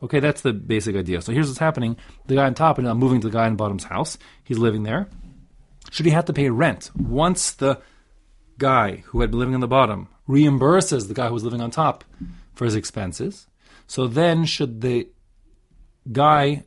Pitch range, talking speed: 105-140 Hz, 210 wpm